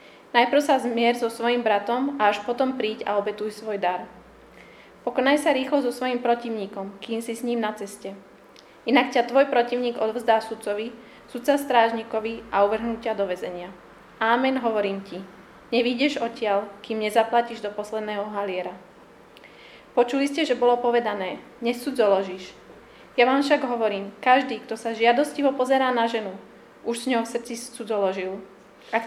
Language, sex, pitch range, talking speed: Slovak, female, 210-250 Hz, 150 wpm